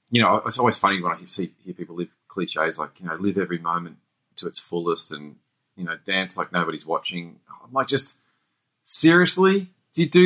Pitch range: 90-140 Hz